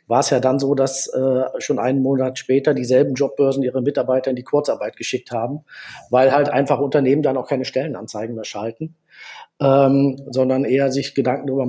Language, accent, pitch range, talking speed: German, German, 130-155 Hz, 185 wpm